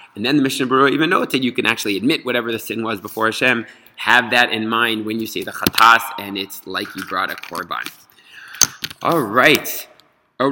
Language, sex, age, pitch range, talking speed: English, male, 30-49, 100-120 Hz, 215 wpm